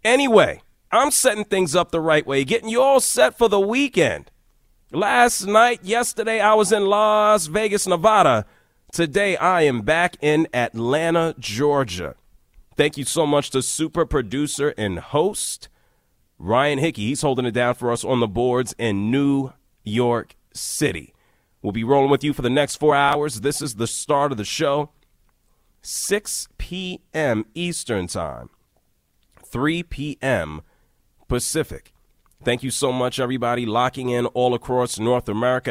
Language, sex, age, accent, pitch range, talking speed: English, male, 30-49, American, 115-170 Hz, 150 wpm